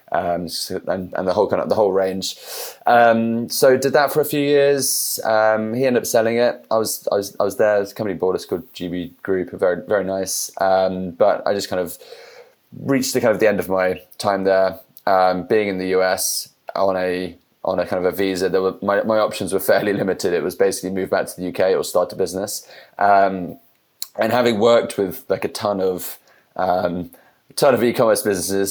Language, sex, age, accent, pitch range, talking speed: English, male, 20-39, British, 90-115 Hz, 215 wpm